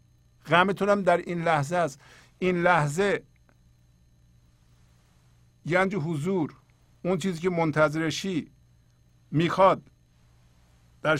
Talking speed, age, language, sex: 80 wpm, 50-69, Persian, male